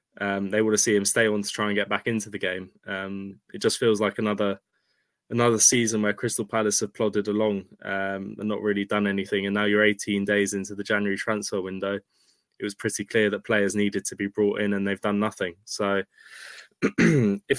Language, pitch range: English, 100-110 Hz